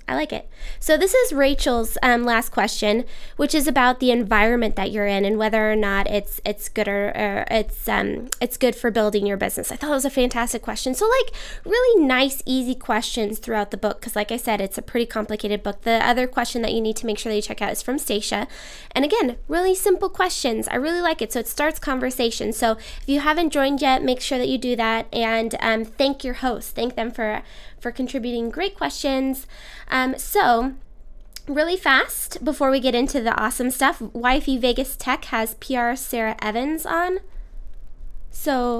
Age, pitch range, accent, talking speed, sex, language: 10-29, 225-275 Hz, American, 205 wpm, female, English